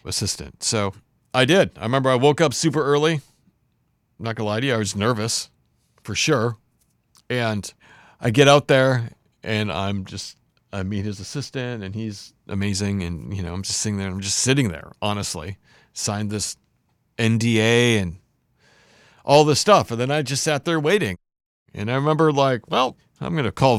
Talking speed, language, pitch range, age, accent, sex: 180 wpm, English, 105-135 Hz, 40-59, American, male